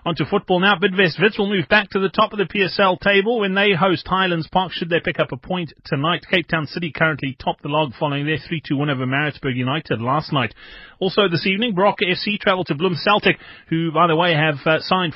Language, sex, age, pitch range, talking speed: English, male, 30-49, 135-175 Hz, 225 wpm